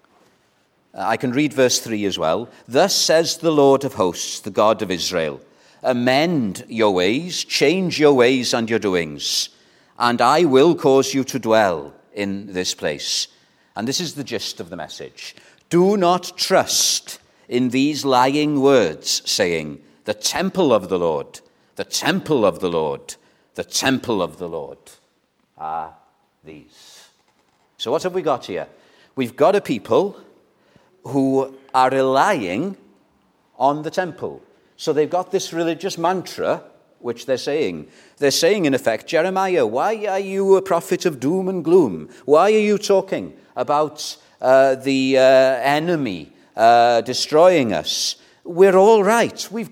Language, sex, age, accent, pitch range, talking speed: English, male, 50-69, British, 130-190 Hz, 150 wpm